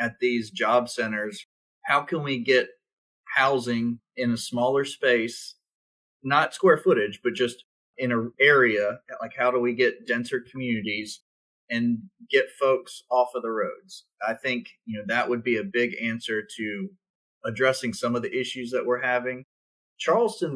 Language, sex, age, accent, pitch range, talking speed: English, male, 30-49, American, 115-135 Hz, 160 wpm